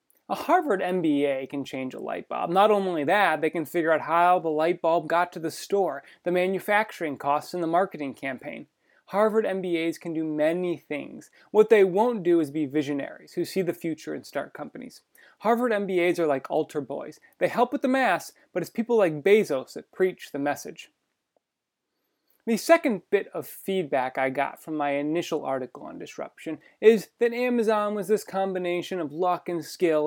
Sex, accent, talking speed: male, American, 185 wpm